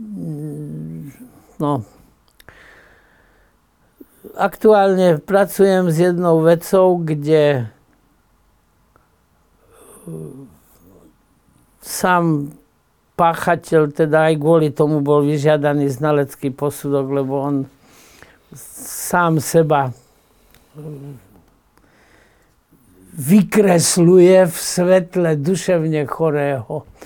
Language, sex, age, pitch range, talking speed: Slovak, male, 50-69, 140-175 Hz, 60 wpm